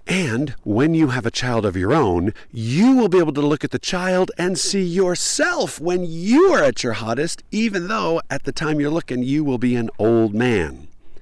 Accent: American